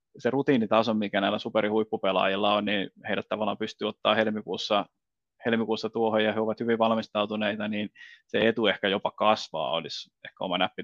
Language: Finnish